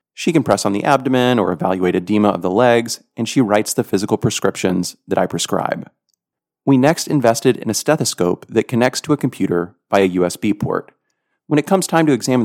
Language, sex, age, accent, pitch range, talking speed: English, male, 30-49, American, 95-130 Hz, 200 wpm